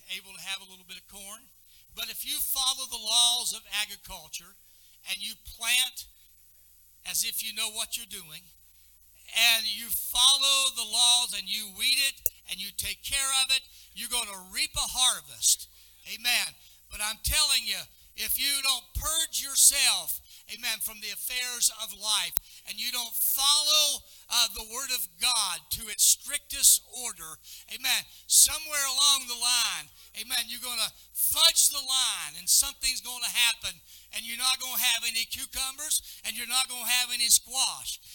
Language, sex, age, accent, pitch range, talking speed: English, male, 60-79, American, 175-255 Hz, 170 wpm